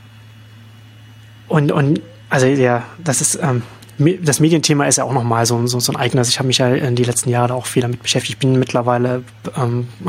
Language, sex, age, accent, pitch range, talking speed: German, male, 30-49, German, 115-130 Hz, 210 wpm